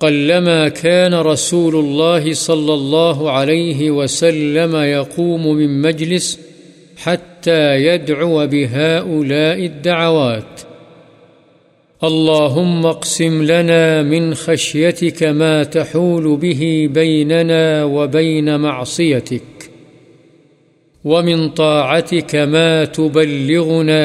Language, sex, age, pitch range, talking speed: Urdu, male, 50-69, 150-165 Hz, 75 wpm